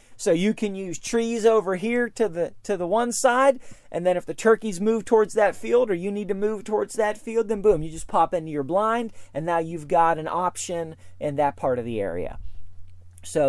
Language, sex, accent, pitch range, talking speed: English, male, American, 150-215 Hz, 225 wpm